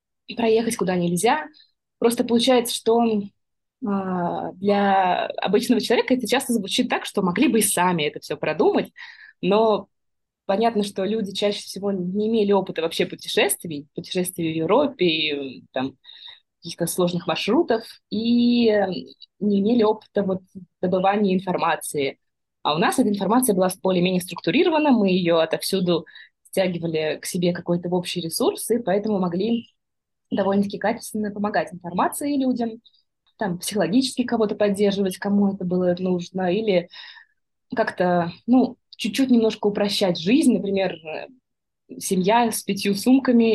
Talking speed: 130 wpm